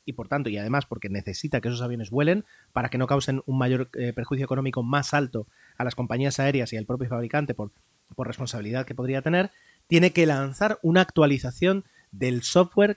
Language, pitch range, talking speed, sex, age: Spanish, 125-160 Hz, 200 wpm, male, 30-49